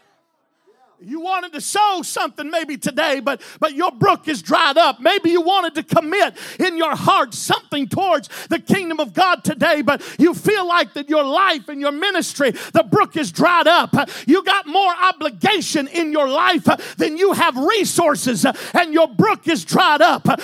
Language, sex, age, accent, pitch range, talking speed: English, male, 50-69, American, 310-380 Hz, 180 wpm